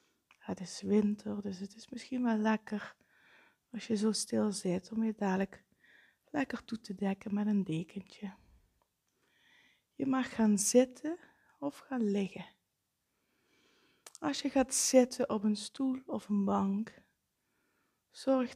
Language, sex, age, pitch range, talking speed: Dutch, female, 20-39, 190-235 Hz, 135 wpm